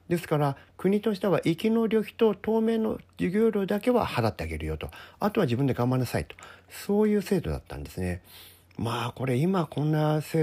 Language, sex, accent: Japanese, male, native